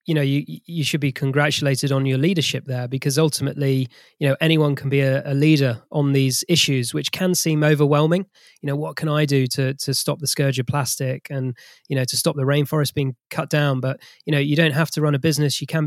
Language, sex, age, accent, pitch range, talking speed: English, male, 20-39, British, 135-150 Hz, 240 wpm